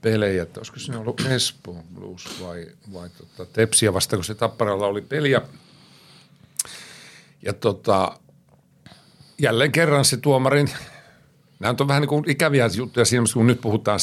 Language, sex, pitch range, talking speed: Finnish, male, 105-140 Hz, 135 wpm